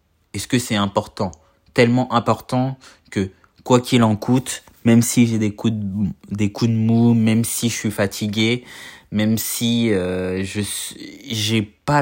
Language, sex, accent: French, male, French